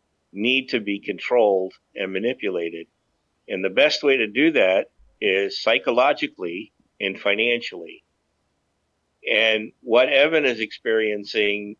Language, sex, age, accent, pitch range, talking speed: English, male, 50-69, American, 100-135 Hz, 110 wpm